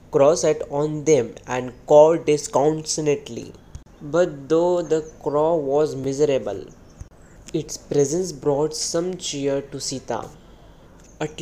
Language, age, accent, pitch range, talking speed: English, 20-39, Indian, 125-155 Hz, 110 wpm